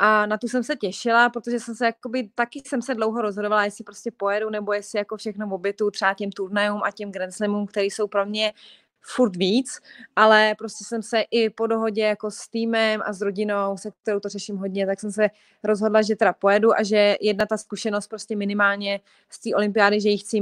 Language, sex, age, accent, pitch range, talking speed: Czech, female, 20-39, native, 200-230 Hz, 215 wpm